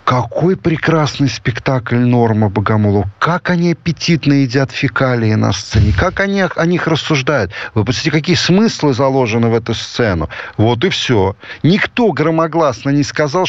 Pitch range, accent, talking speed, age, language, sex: 110-160 Hz, native, 140 wpm, 50-69, Russian, male